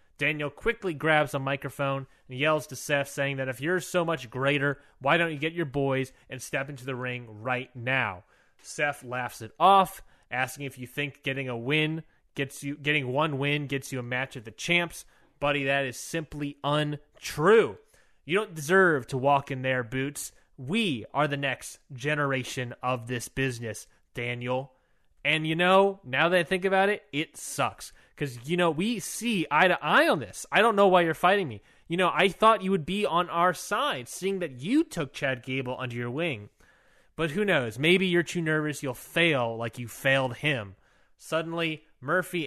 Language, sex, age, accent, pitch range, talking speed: English, male, 20-39, American, 125-165 Hz, 190 wpm